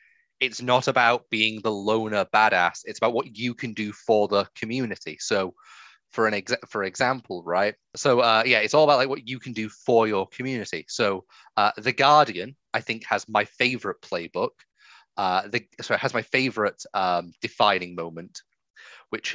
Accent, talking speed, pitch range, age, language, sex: British, 175 wpm, 105-130 Hz, 30-49, English, male